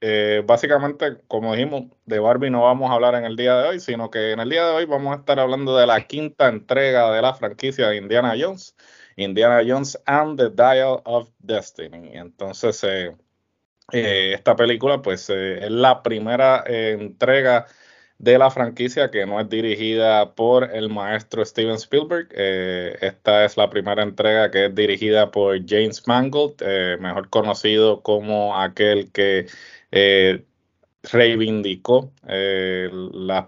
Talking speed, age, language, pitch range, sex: 160 wpm, 20-39, Spanish, 100-120 Hz, male